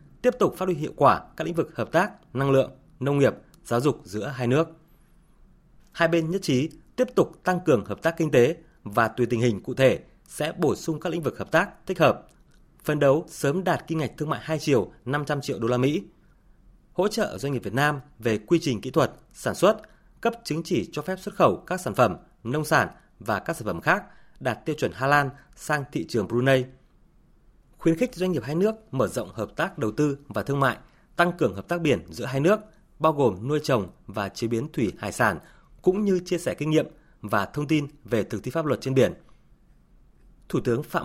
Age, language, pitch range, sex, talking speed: 20-39, Vietnamese, 125-160 Hz, male, 225 wpm